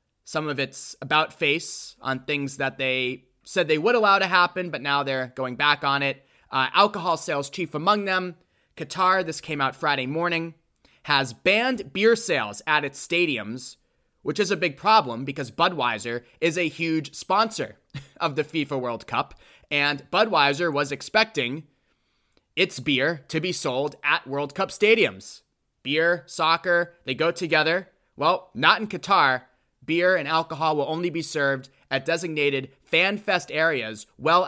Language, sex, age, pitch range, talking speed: English, male, 20-39, 140-185 Hz, 160 wpm